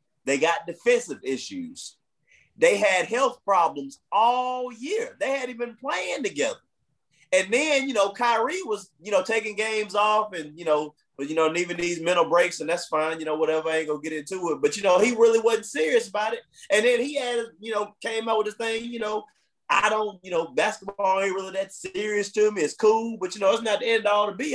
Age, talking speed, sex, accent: 30-49, 230 wpm, male, American